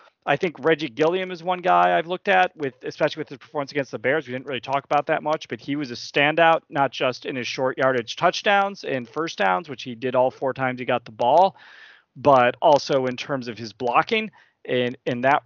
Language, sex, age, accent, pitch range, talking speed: English, male, 30-49, American, 125-170 Hz, 235 wpm